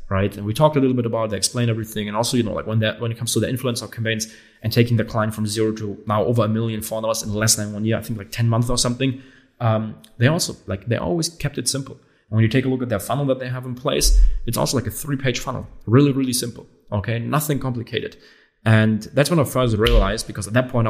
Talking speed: 275 wpm